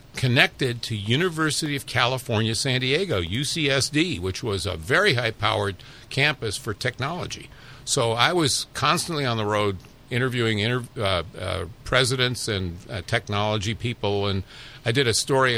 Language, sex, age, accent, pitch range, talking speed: English, male, 50-69, American, 110-140 Hz, 145 wpm